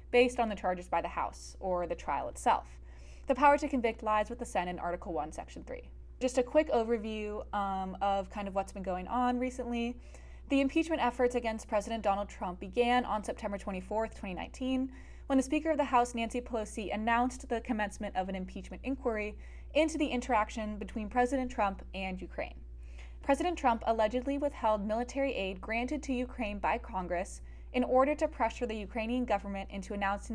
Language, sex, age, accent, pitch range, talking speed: English, female, 20-39, American, 185-245 Hz, 180 wpm